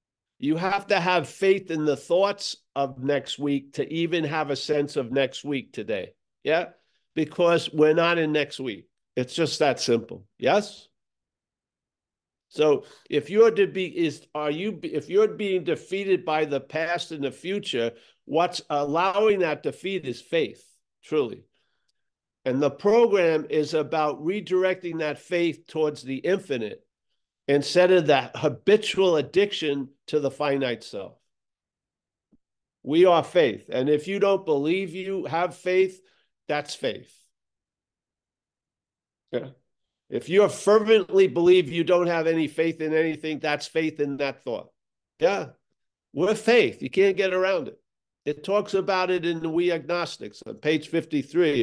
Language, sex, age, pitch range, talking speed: English, male, 50-69, 145-190 Hz, 145 wpm